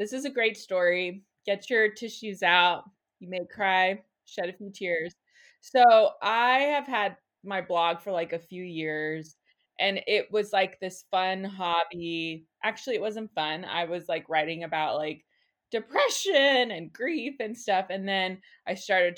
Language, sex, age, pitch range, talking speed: English, female, 20-39, 175-225 Hz, 165 wpm